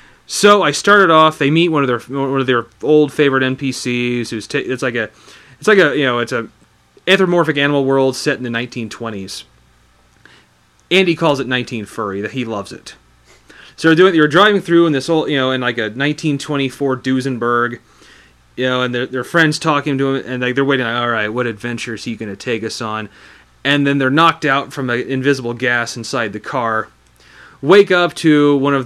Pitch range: 115-145 Hz